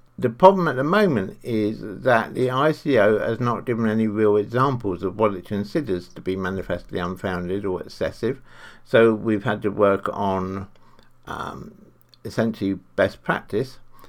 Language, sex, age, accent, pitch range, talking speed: English, male, 60-79, British, 95-120 Hz, 150 wpm